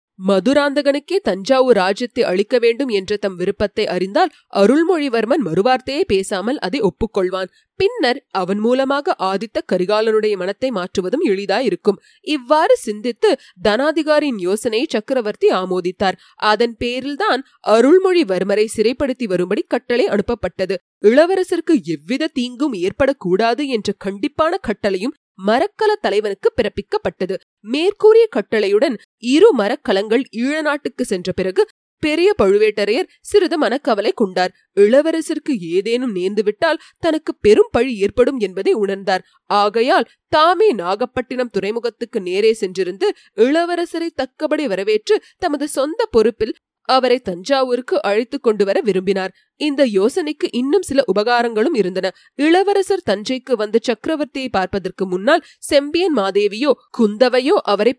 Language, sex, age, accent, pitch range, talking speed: Tamil, female, 30-49, native, 205-315 Hz, 100 wpm